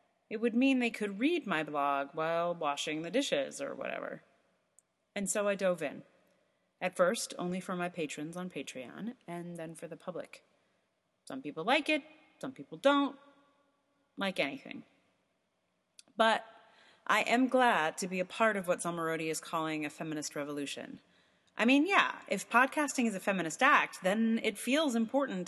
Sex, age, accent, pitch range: female, 30-49, American, 165-270 Hz